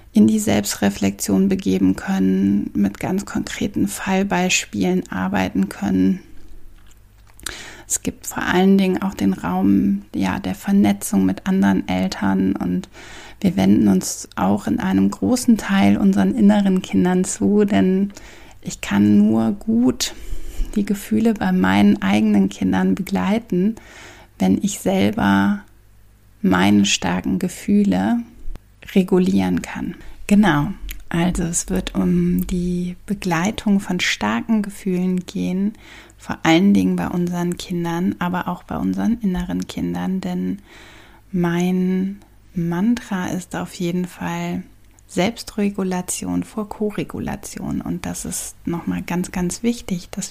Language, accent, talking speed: German, German, 115 wpm